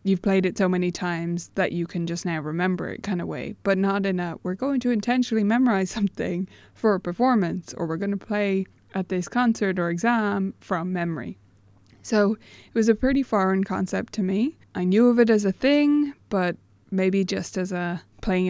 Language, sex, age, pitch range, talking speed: English, female, 20-39, 175-210 Hz, 205 wpm